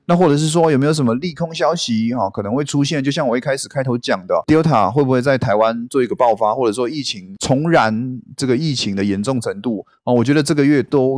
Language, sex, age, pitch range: Chinese, male, 20-39, 115-155 Hz